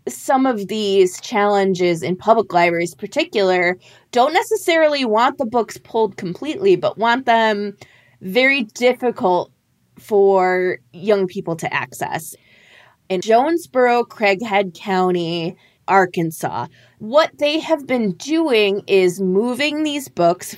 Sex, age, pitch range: female, 20-39, 180-240 Hz